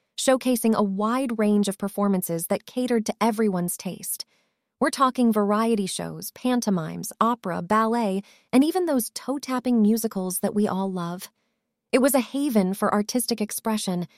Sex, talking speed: female, 150 wpm